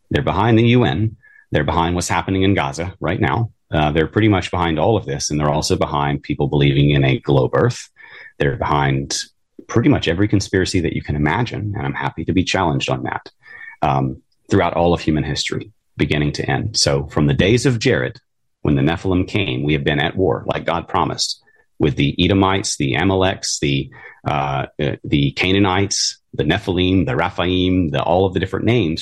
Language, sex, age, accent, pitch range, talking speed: English, male, 30-49, American, 75-100 Hz, 190 wpm